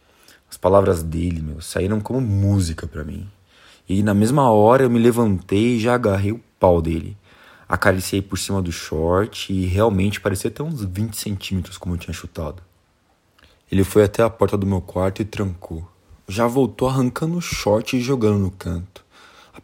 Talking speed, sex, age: 175 wpm, male, 20-39